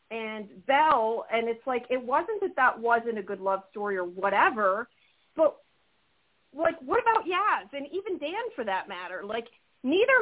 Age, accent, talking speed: 40-59, American, 175 wpm